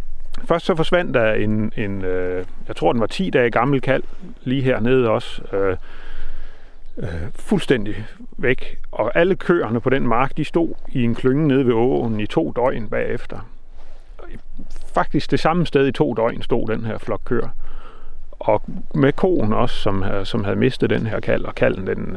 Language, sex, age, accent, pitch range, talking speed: Danish, male, 30-49, native, 105-145 Hz, 175 wpm